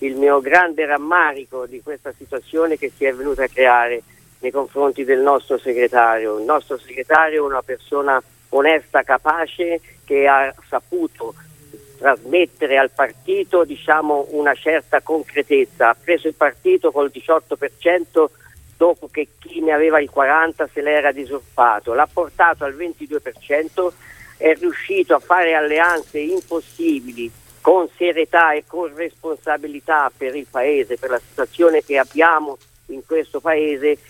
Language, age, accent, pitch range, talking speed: Italian, 50-69, native, 140-175 Hz, 135 wpm